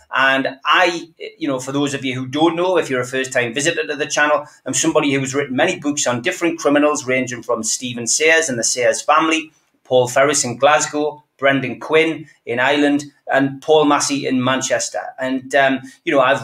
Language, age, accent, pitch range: English, 30-49, British, 130-160 Hz